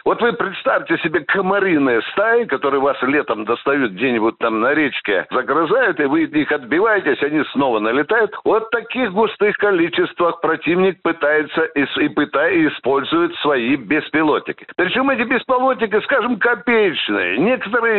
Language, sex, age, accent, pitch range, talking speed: Russian, male, 60-79, native, 190-255 Hz, 135 wpm